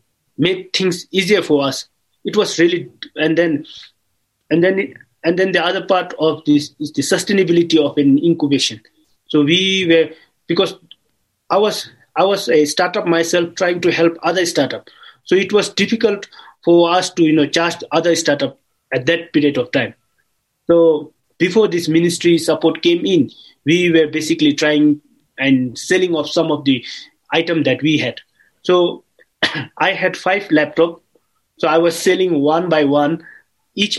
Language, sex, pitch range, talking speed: English, male, 150-185 Hz, 160 wpm